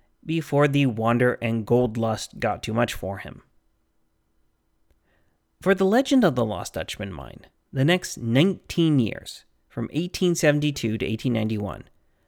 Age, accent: 30-49, American